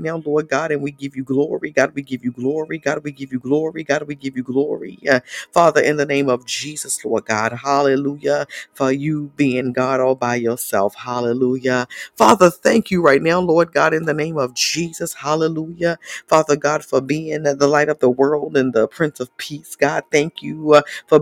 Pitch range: 130-155 Hz